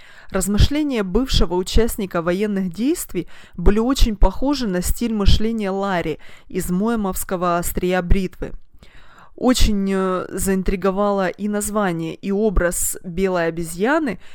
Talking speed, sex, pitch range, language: 100 wpm, female, 180-220 Hz, Russian